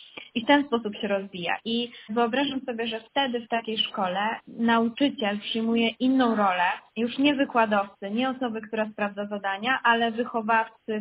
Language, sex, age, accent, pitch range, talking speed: Polish, female, 20-39, native, 210-235 Hz, 155 wpm